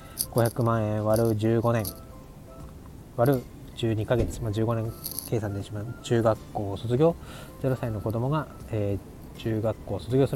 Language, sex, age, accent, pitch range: Japanese, male, 20-39, native, 105-130 Hz